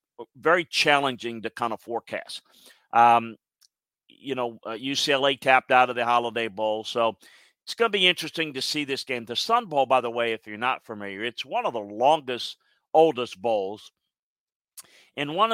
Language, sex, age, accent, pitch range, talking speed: English, male, 50-69, American, 110-130 Hz, 175 wpm